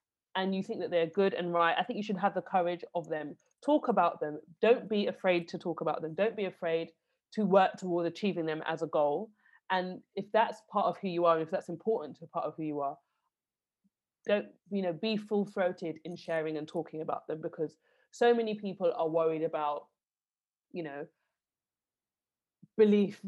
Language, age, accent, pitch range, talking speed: English, 20-39, British, 165-225 Hz, 195 wpm